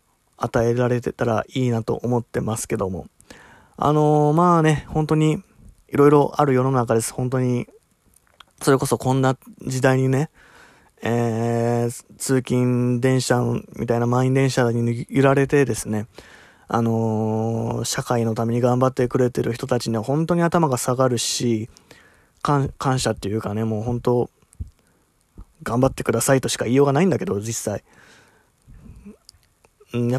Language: Japanese